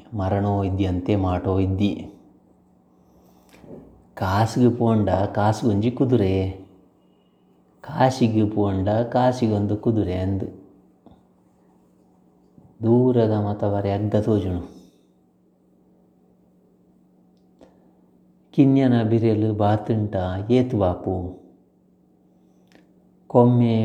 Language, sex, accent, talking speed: English, male, Indian, 35 wpm